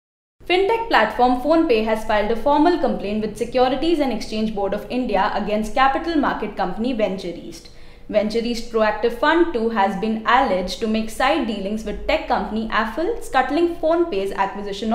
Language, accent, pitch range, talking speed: English, Indian, 215-285 Hz, 155 wpm